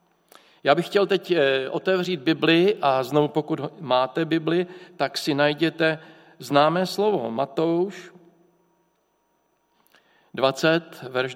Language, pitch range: Czech, 140-180 Hz